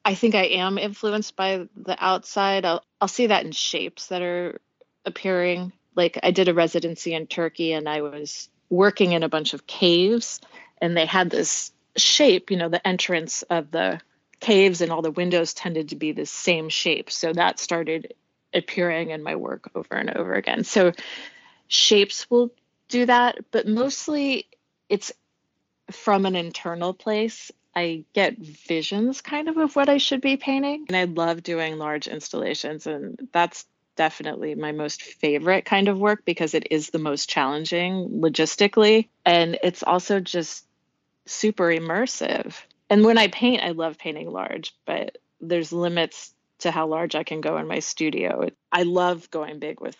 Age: 30-49